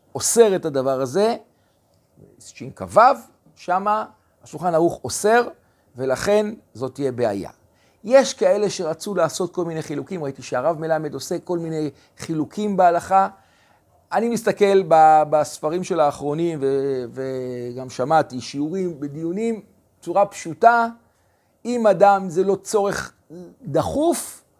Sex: male